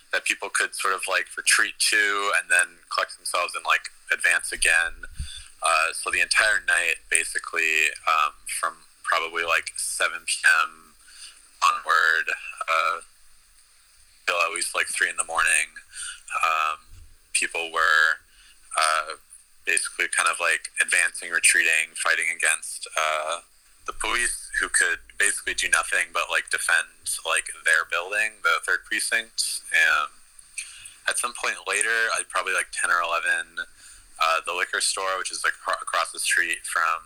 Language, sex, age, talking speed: English, male, 20-39, 145 wpm